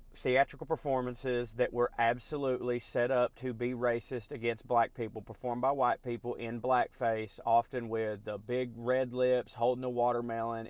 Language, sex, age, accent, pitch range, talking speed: English, male, 30-49, American, 115-135 Hz, 155 wpm